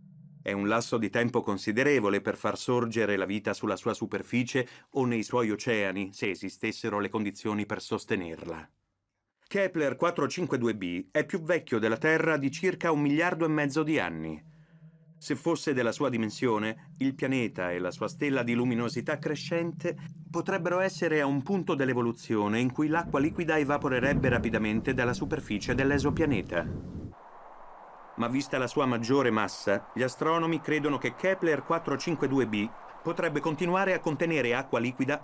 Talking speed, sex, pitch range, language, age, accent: 145 wpm, male, 115-160 Hz, Italian, 30-49, native